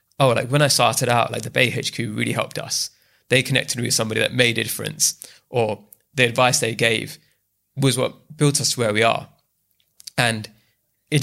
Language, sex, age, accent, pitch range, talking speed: English, male, 20-39, British, 120-145 Hz, 200 wpm